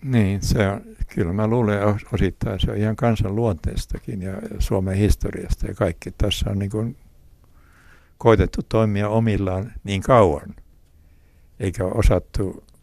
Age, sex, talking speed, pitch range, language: 60-79, male, 110 wpm, 85-105 Hz, Finnish